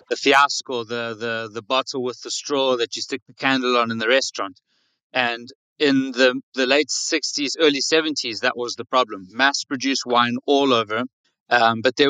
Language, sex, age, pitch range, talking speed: English, male, 30-49, 120-140 Hz, 185 wpm